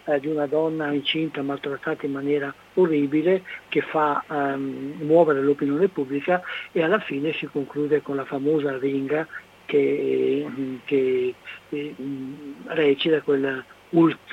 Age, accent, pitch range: 60-79, native, 140-165 Hz